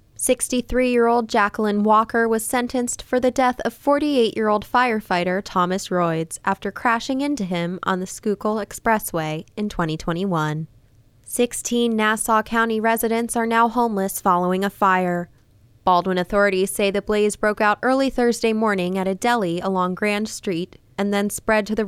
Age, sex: 20-39, female